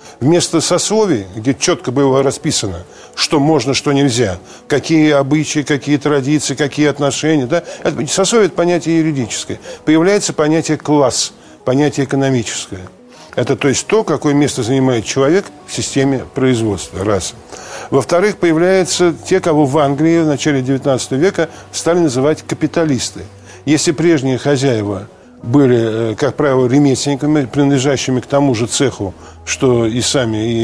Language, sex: Russian, male